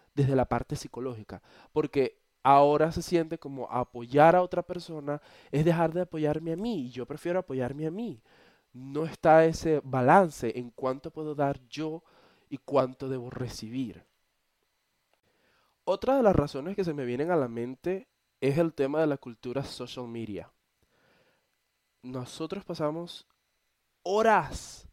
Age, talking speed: 20-39, 145 wpm